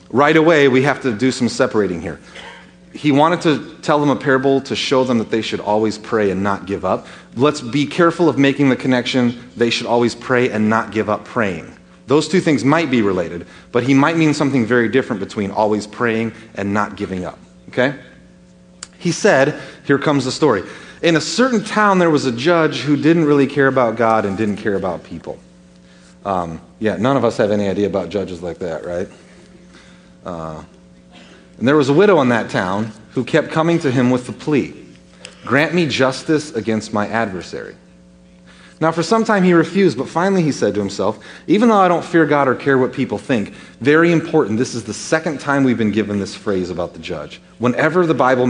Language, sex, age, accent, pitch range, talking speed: English, male, 30-49, American, 100-150 Hz, 205 wpm